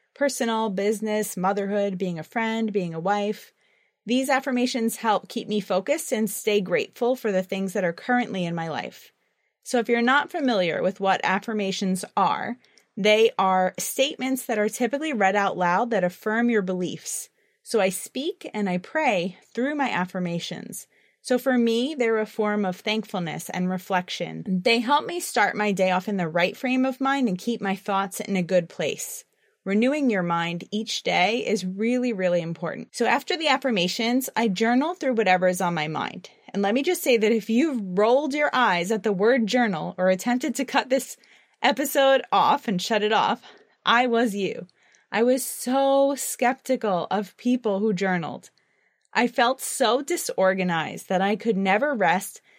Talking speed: 180 wpm